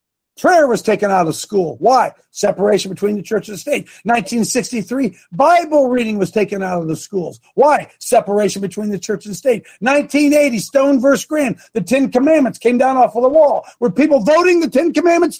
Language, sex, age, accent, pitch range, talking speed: English, male, 50-69, American, 225-310 Hz, 195 wpm